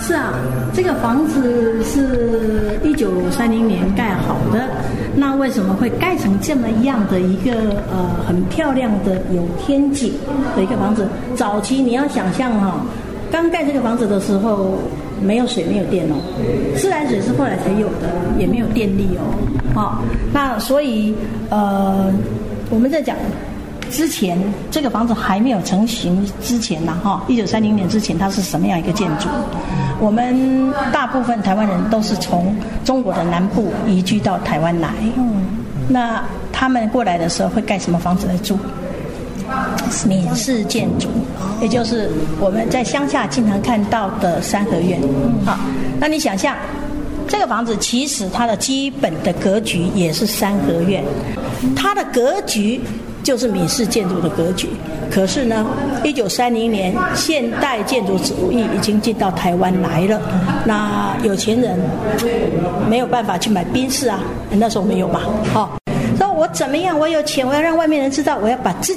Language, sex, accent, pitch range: Chinese, female, American, 195-255 Hz